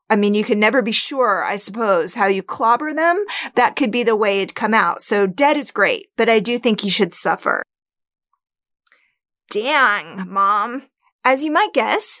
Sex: female